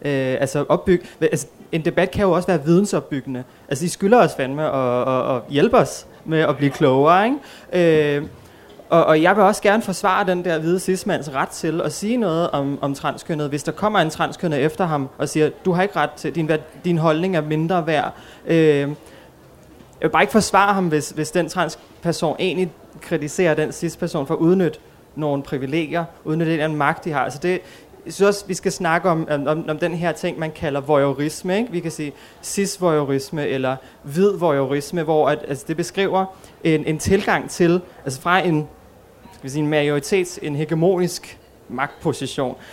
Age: 20-39